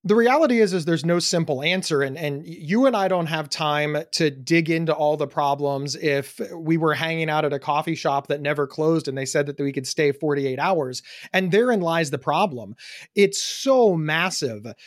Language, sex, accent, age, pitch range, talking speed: English, male, American, 30-49, 155-225 Hz, 205 wpm